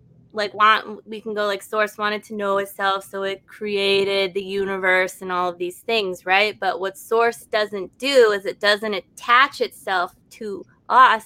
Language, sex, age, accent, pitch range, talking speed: English, female, 20-39, American, 195-225 Hz, 175 wpm